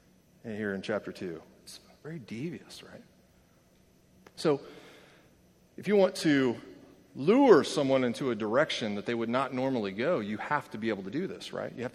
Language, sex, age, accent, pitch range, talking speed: English, male, 30-49, American, 120-160 Hz, 175 wpm